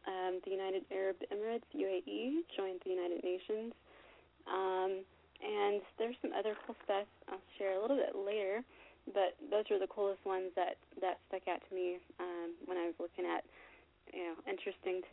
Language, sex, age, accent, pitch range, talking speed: English, female, 20-39, American, 180-215 Hz, 175 wpm